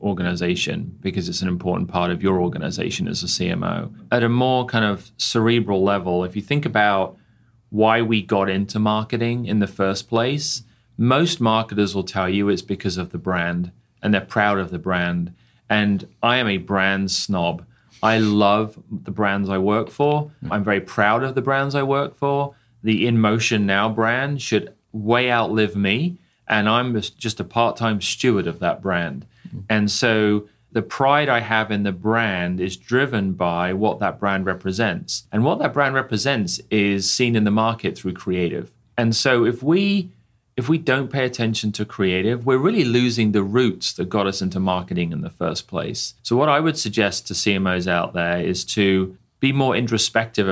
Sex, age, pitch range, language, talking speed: male, 30-49, 95-120 Hz, English, 185 wpm